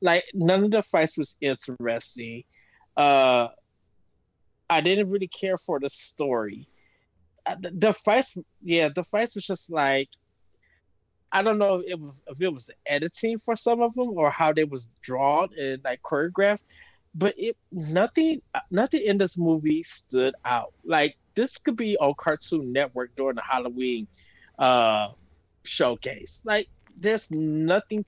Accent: American